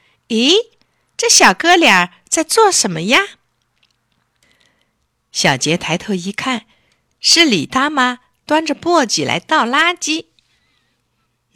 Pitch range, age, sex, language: 165-260 Hz, 50-69, female, Chinese